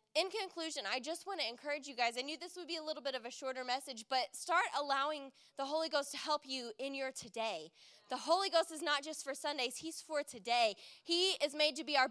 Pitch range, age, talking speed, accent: 255-315 Hz, 10-29, 250 wpm, American